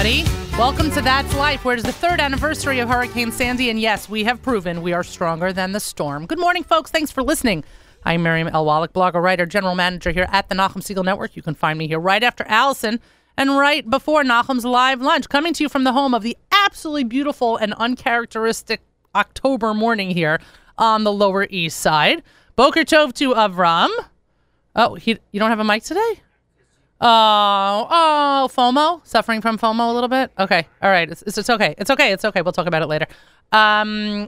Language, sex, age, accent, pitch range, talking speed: English, female, 30-49, American, 190-265 Hz, 200 wpm